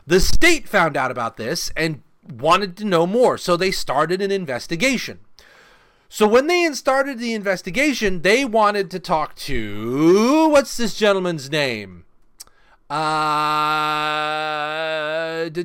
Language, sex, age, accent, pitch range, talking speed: English, male, 30-49, American, 155-220 Hz, 125 wpm